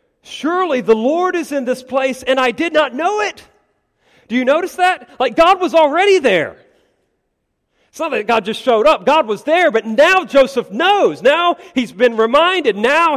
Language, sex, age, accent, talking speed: English, male, 40-59, American, 185 wpm